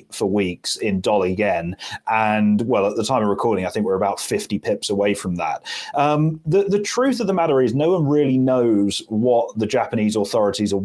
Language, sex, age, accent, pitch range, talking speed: English, male, 30-49, British, 110-140 Hz, 210 wpm